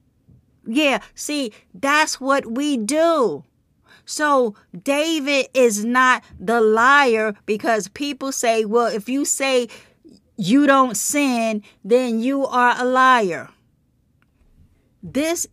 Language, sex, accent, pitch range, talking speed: English, female, American, 230-285 Hz, 110 wpm